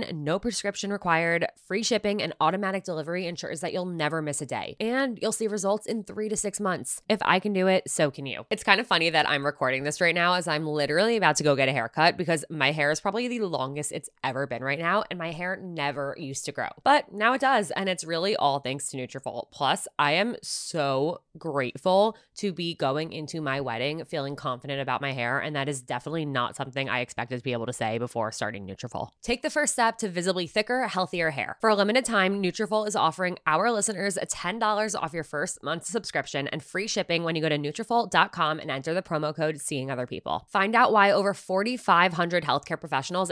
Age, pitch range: 20-39, 145-200 Hz